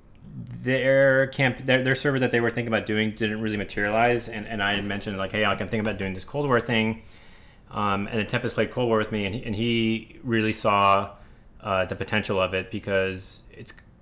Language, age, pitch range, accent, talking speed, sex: English, 30-49, 95-115 Hz, American, 220 wpm, male